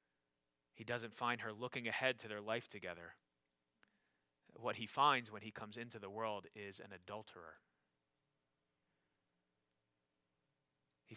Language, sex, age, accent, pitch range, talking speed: English, male, 30-49, American, 85-130 Hz, 125 wpm